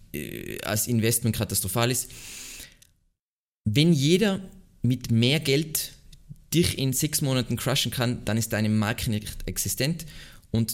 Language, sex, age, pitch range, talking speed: German, male, 20-39, 105-130 Hz, 125 wpm